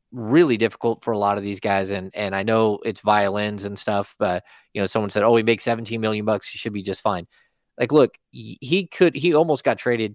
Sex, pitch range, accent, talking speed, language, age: male, 105-135 Hz, American, 230 wpm, English, 30-49